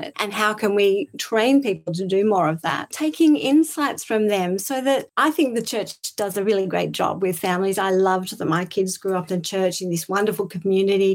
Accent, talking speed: Australian, 220 wpm